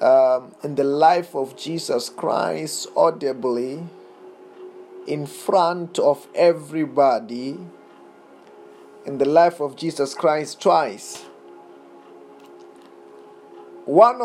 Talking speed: 85 wpm